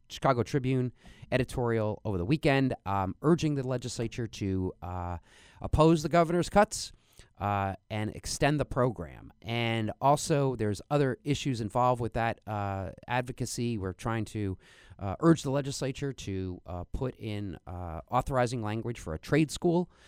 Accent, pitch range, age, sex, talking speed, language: American, 100-130 Hz, 30-49, male, 145 wpm, English